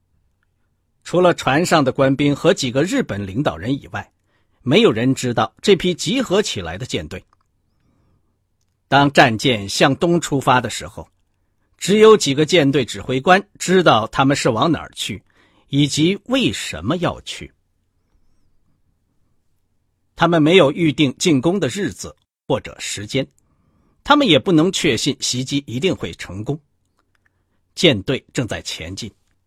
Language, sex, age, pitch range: Chinese, male, 50-69, 95-155 Hz